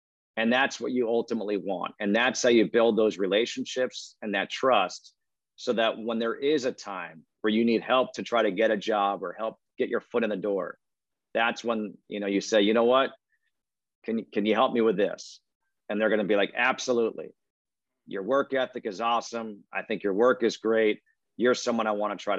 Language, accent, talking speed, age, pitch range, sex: English, American, 215 wpm, 40-59, 105-125 Hz, male